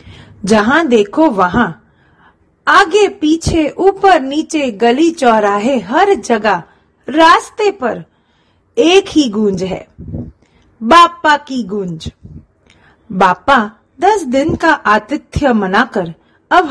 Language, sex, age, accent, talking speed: Gujarati, female, 30-49, native, 100 wpm